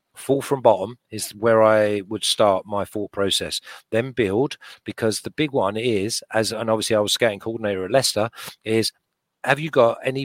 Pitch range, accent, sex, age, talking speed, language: 105-140 Hz, British, male, 40-59, 185 wpm, English